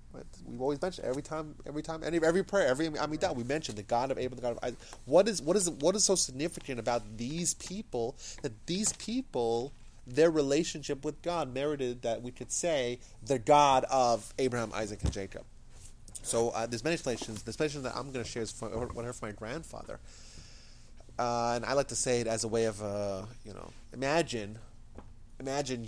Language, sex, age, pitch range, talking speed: English, male, 30-49, 110-150 Hz, 205 wpm